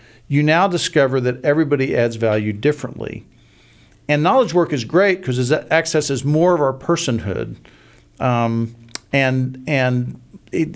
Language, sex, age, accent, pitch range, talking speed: English, male, 50-69, American, 115-135 Hz, 135 wpm